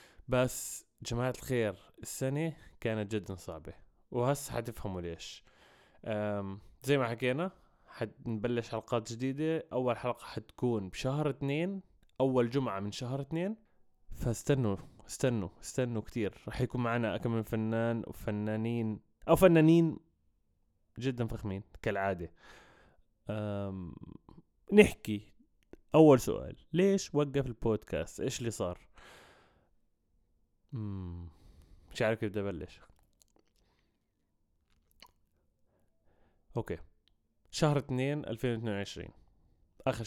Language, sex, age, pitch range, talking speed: Arabic, male, 20-39, 95-125 Hz, 90 wpm